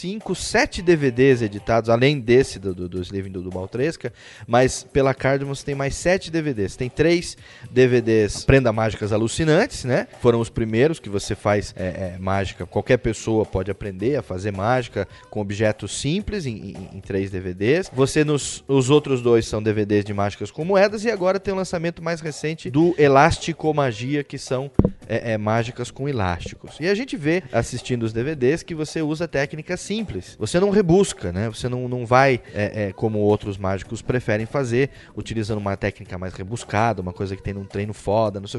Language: Portuguese